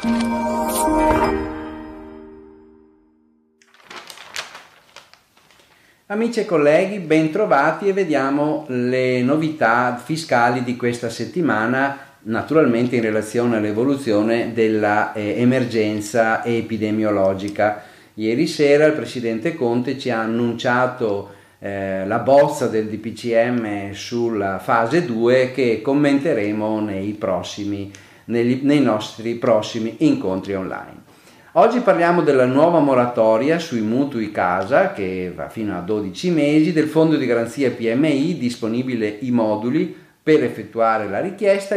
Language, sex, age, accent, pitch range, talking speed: Italian, male, 40-59, native, 105-145 Hz, 100 wpm